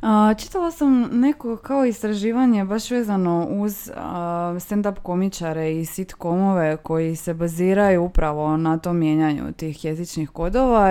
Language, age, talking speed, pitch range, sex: Croatian, 20-39, 130 wpm, 165-210 Hz, female